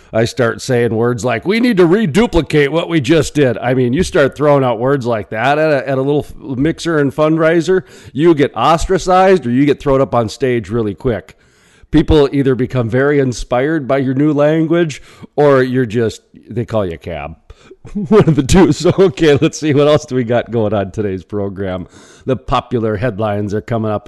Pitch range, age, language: 105-150 Hz, 40-59, English